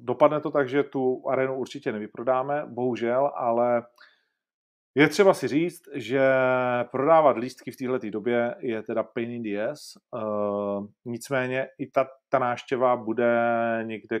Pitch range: 115-135 Hz